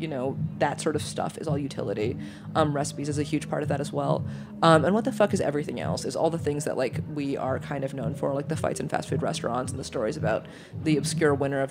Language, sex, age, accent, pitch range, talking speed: English, female, 30-49, American, 140-165 Hz, 275 wpm